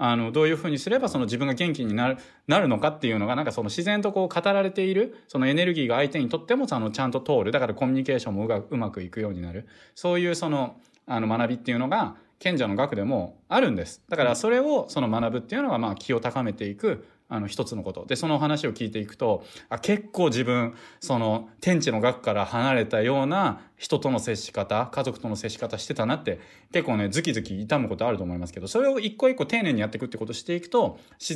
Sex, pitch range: male, 100-160 Hz